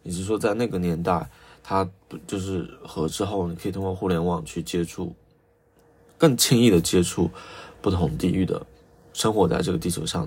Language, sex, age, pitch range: Chinese, male, 20-39, 90-120 Hz